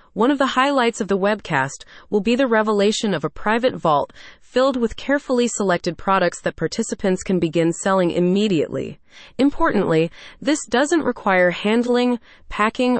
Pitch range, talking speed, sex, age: 170-235 Hz, 150 wpm, female, 30-49